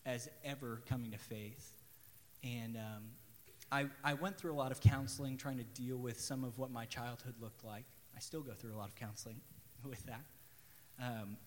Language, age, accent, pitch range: English, 30-49, American, 120-150 Hz